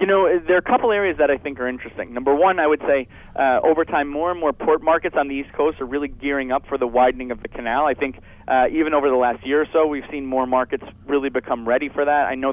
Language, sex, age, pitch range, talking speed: English, male, 30-49, 125-150 Hz, 285 wpm